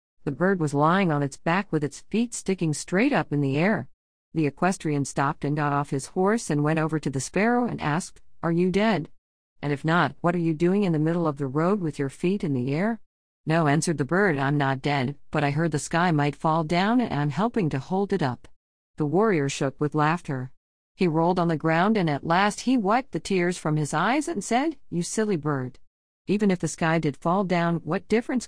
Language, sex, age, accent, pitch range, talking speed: English, female, 50-69, American, 145-195 Hz, 230 wpm